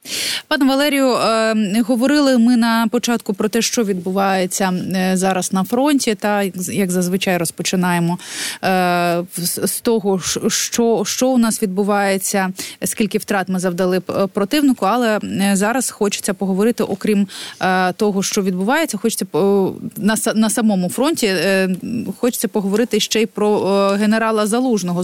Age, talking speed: 20-39, 115 wpm